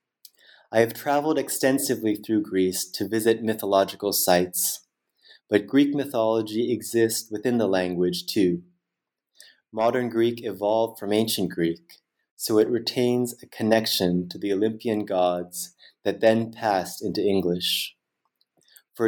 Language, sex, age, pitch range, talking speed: English, male, 30-49, 95-115 Hz, 125 wpm